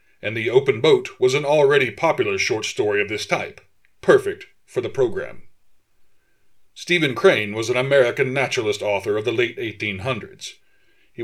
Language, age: English, 40-59